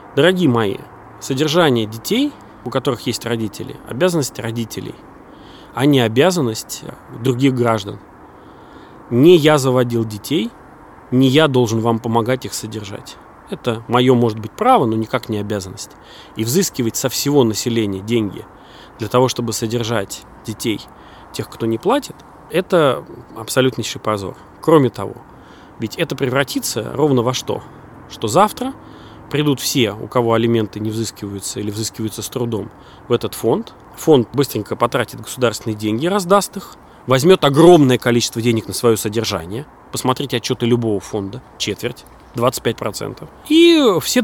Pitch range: 110-140 Hz